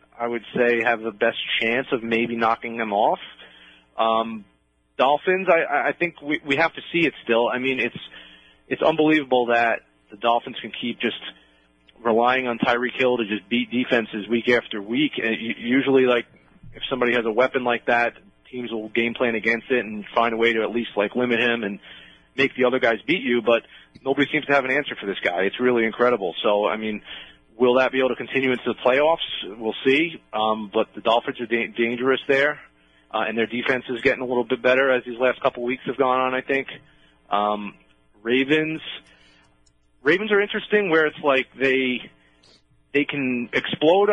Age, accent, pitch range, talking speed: 30-49, American, 110-140 Hz, 200 wpm